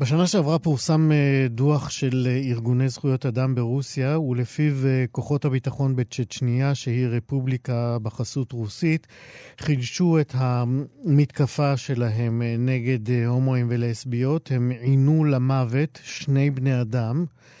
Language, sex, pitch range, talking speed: Hebrew, male, 125-145 Hz, 100 wpm